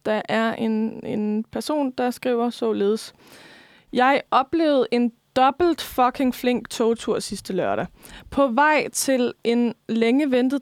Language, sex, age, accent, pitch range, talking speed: Danish, female, 20-39, native, 225-275 Hz, 130 wpm